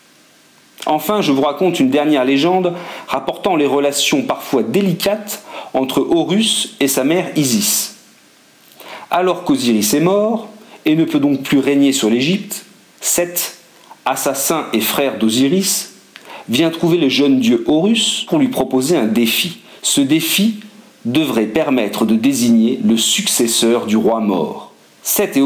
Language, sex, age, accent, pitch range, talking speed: French, male, 40-59, French, 135-205 Hz, 140 wpm